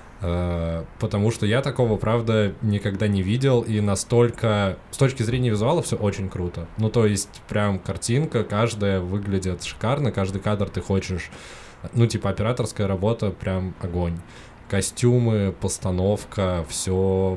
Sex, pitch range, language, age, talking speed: male, 90-110 Hz, Russian, 20-39, 130 wpm